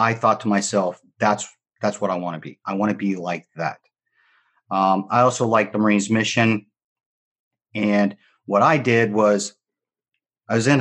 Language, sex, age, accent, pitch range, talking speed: English, male, 40-59, American, 105-125 Hz, 180 wpm